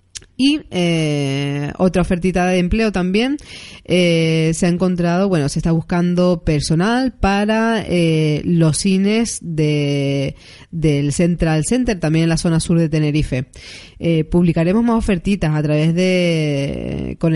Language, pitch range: Spanish, 155-185 Hz